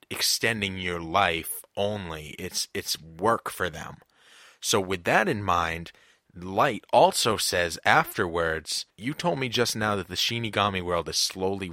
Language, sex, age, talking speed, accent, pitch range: English, male, 30-49, 150 wpm, American, 90-115 Hz